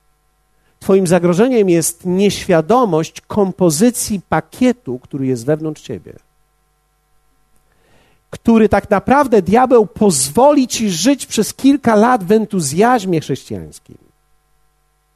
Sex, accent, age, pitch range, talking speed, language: male, native, 50-69, 150-210 Hz, 90 wpm, Polish